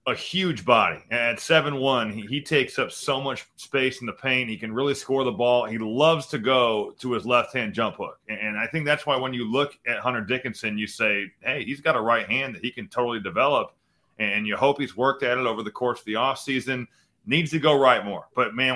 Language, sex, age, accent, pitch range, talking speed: English, male, 30-49, American, 120-145 Hz, 245 wpm